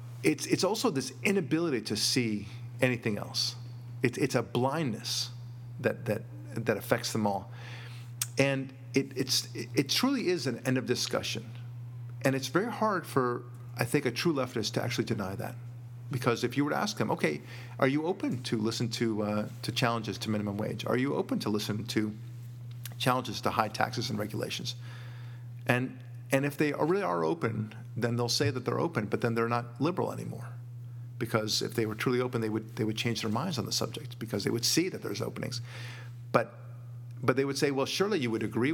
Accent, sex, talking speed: American, male, 200 wpm